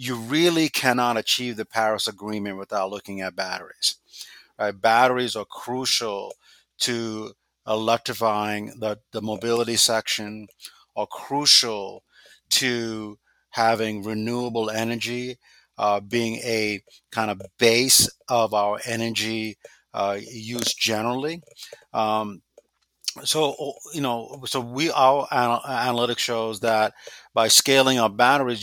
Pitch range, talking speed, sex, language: 105-125 Hz, 110 wpm, male, English